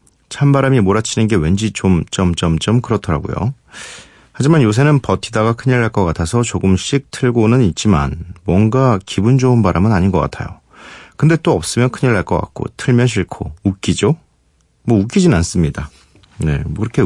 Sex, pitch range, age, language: male, 90-130 Hz, 40-59, Korean